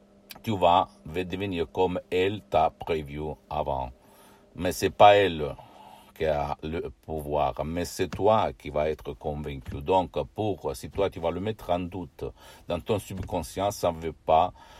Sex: male